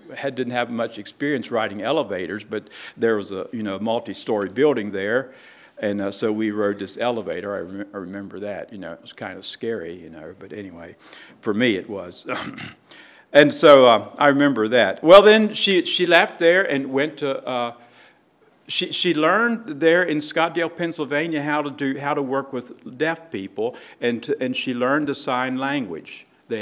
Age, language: 60-79, English